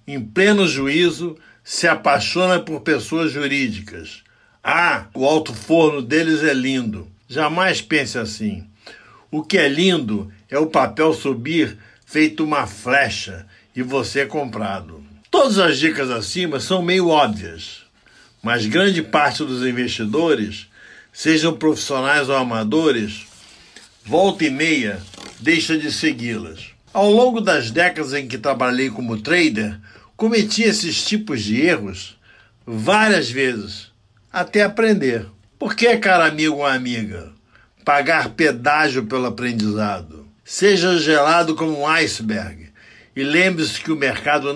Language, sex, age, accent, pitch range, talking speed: Portuguese, male, 60-79, Brazilian, 110-165 Hz, 125 wpm